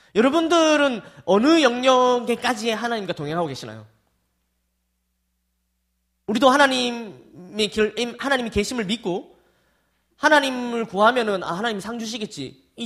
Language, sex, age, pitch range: Korean, male, 20-39, 145-245 Hz